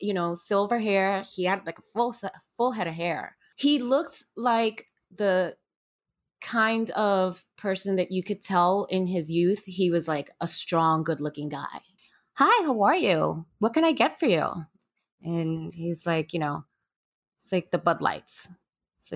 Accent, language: American, English